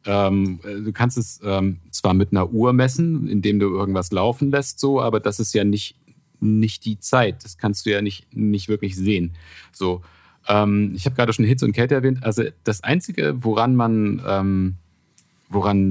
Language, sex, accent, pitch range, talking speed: German, male, German, 90-115 Hz, 185 wpm